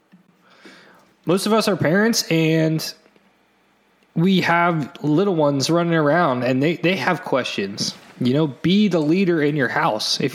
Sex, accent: male, American